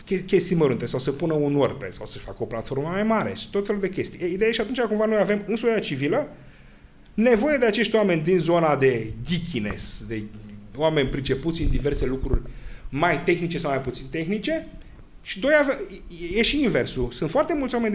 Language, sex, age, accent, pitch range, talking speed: Romanian, male, 30-49, native, 125-200 Hz, 200 wpm